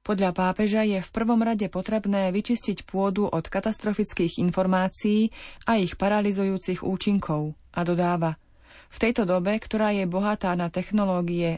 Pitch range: 180-210 Hz